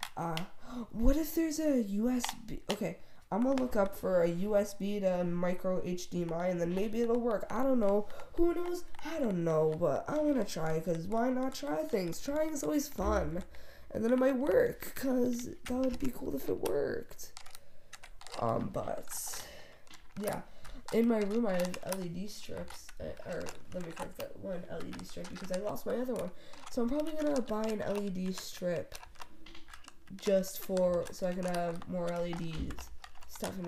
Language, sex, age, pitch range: English, female, 20-39, 180-235 Hz